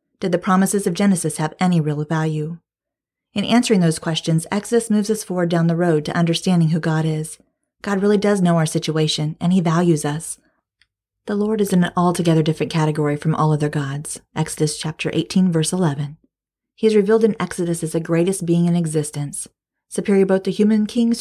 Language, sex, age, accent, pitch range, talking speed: English, female, 40-59, American, 155-190 Hz, 190 wpm